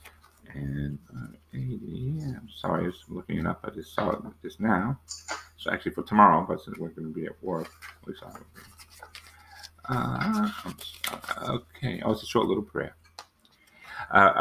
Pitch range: 85-135 Hz